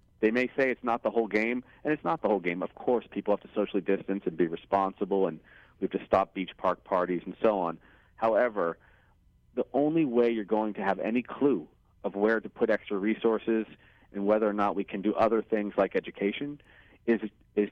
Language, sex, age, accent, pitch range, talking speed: English, male, 40-59, American, 100-115 Hz, 215 wpm